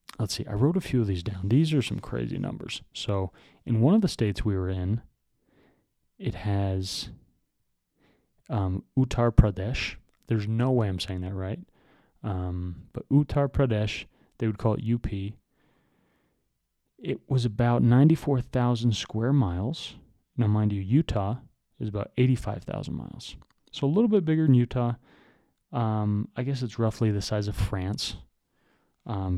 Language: English